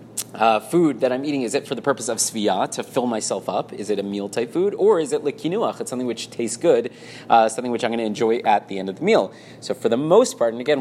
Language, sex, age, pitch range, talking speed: English, male, 30-49, 115-140 Hz, 285 wpm